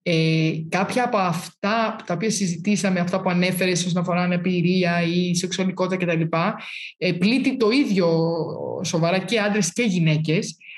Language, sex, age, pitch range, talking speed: Greek, male, 20-39, 175-230 Hz, 145 wpm